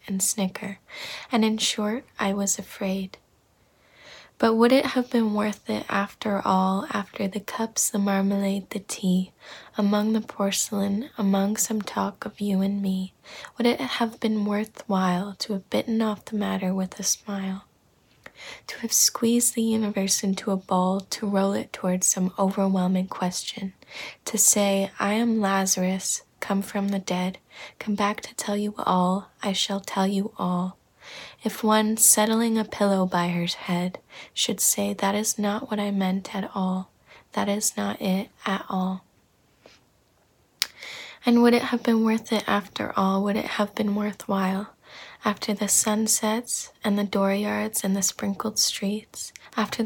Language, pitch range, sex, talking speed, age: English, 195-215 Hz, female, 155 wpm, 20-39